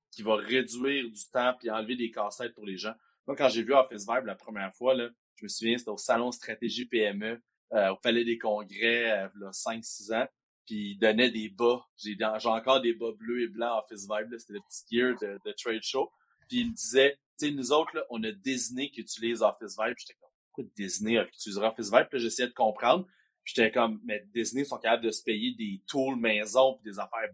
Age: 30-49